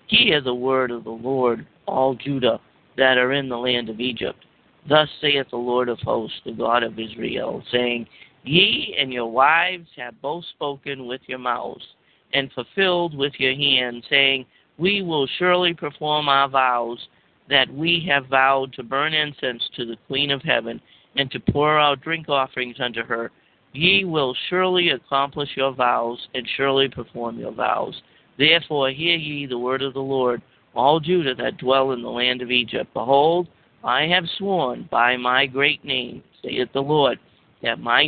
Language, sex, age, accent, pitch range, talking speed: English, male, 50-69, American, 125-150 Hz, 170 wpm